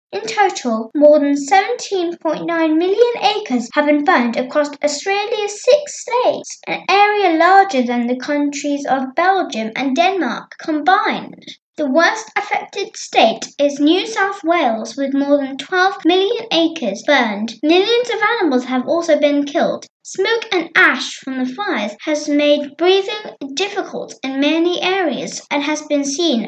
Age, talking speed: 10-29, 145 wpm